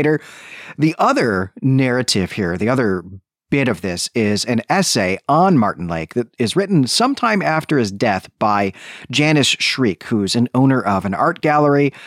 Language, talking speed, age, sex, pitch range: English, 165 wpm, 40-59, male, 110-155 Hz